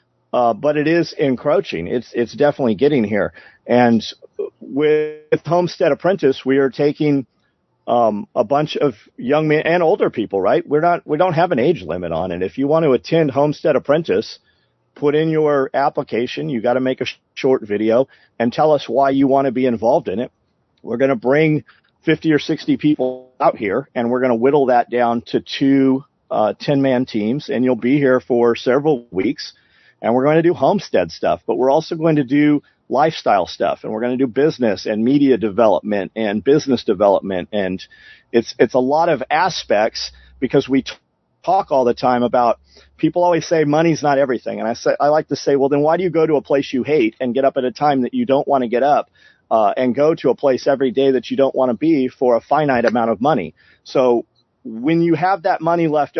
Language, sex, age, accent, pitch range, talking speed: English, male, 50-69, American, 125-150 Hz, 215 wpm